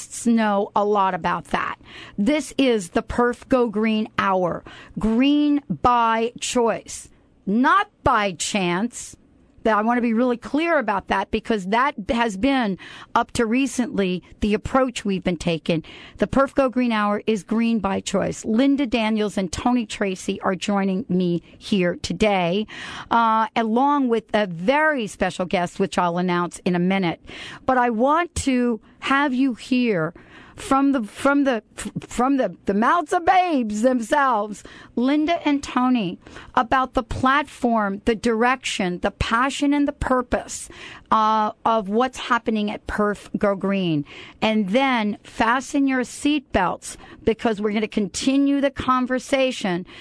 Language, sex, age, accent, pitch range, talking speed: English, female, 40-59, American, 205-260 Hz, 145 wpm